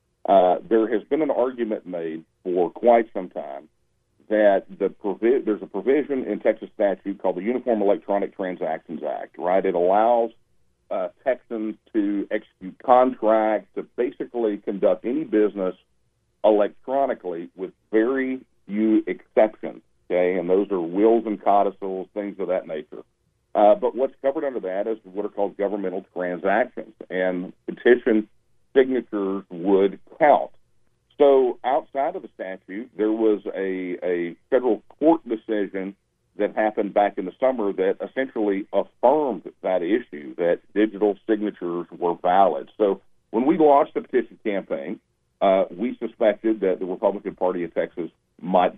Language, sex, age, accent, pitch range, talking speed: English, male, 50-69, American, 95-115 Hz, 140 wpm